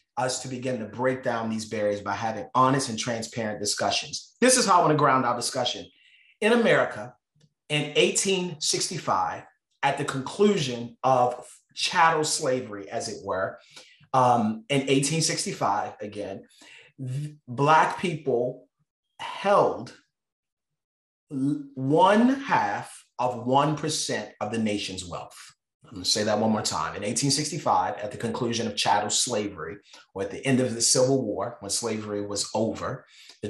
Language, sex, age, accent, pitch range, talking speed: English, male, 30-49, American, 110-150 Hz, 140 wpm